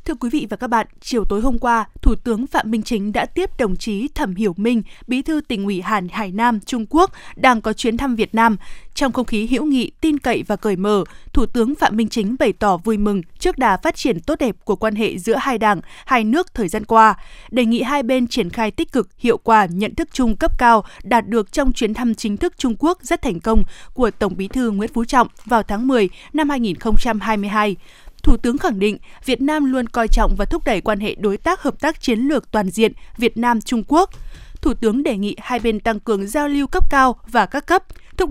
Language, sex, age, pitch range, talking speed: Vietnamese, female, 20-39, 215-270 Hz, 240 wpm